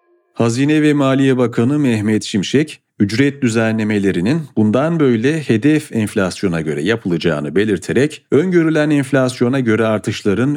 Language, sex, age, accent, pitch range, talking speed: Turkish, male, 40-59, native, 105-135 Hz, 110 wpm